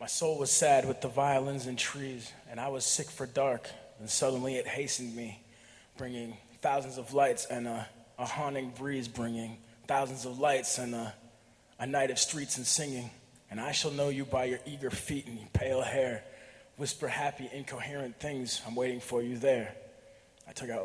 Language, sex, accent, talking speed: English, male, American, 190 wpm